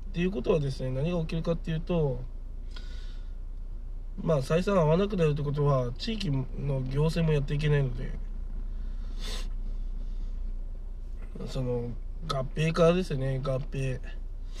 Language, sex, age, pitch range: Japanese, male, 20-39, 90-145 Hz